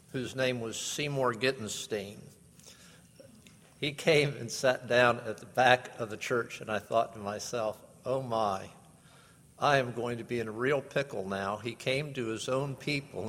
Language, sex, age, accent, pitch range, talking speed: English, male, 50-69, American, 110-140 Hz, 175 wpm